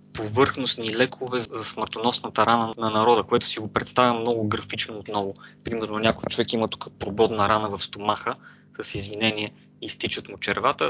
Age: 20-39